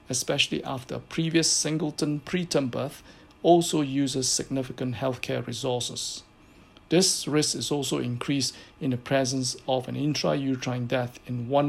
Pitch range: 130-155 Hz